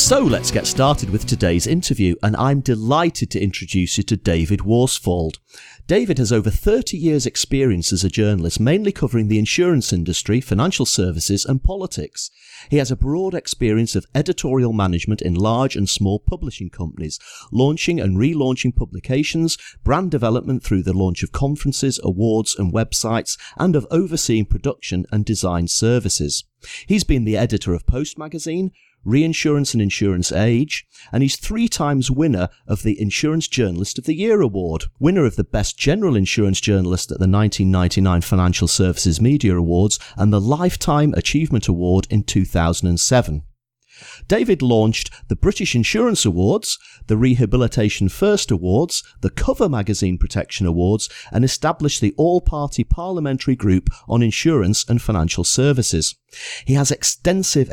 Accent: British